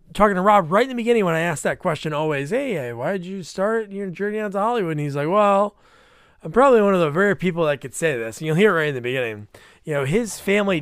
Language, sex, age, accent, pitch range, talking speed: English, male, 20-39, American, 135-195 Hz, 280 wpm